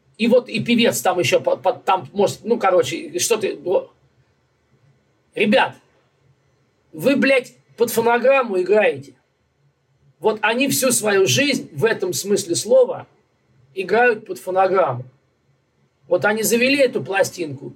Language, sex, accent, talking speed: Russian, male, native, 120 wpm